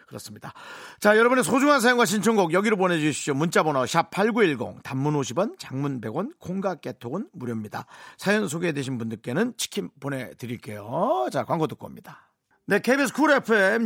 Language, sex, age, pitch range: Korean, male, 40-59, 125-180 Hz